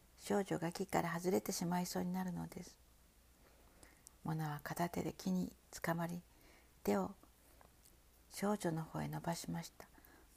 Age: 50-69